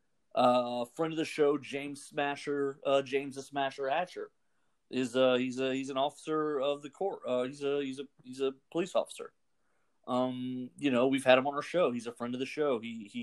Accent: American